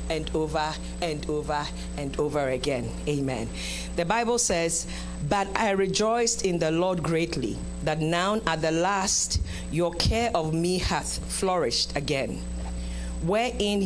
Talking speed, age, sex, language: 135 wpm, 50-69, female, English